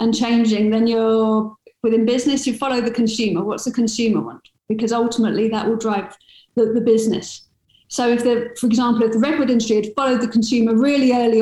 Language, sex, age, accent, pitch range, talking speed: English, female, 40-59, British, 225-255 Hz, 195 wpm